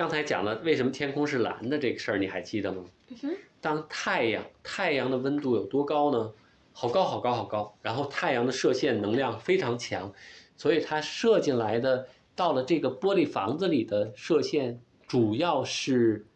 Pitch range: 110-165 Hz